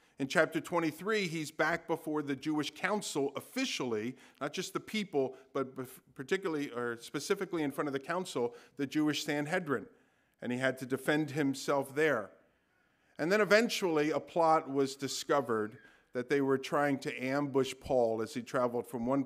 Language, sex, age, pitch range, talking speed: English, male, 50-69, 120-145 Hz, 160 wpm